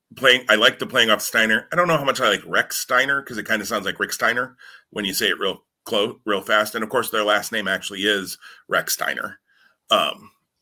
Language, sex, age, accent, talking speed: English, male, 30-49, American, 245 wpm